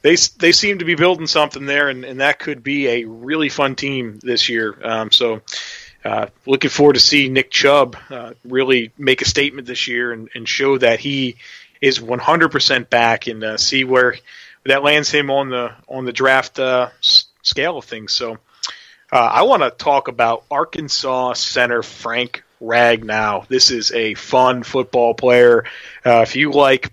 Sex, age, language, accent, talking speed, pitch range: male, 30-49, English, American, 180 wpm, 120-145 Hz